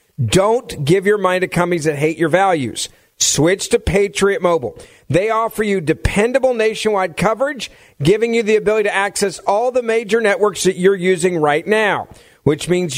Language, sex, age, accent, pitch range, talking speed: English, male, 50-69, American, 160-215 Hz, 170 wpm